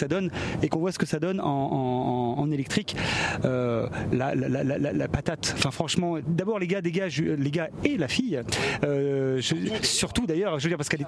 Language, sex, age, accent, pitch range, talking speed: French, male, 30-49, French, 155-205 Hz, 215 wpm